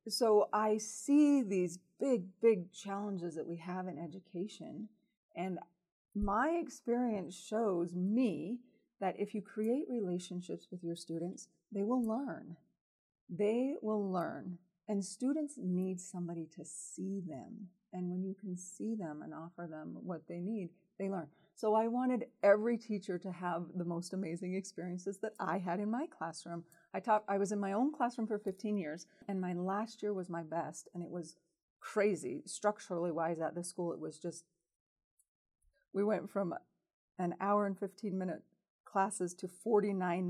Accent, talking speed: American, 165 wpm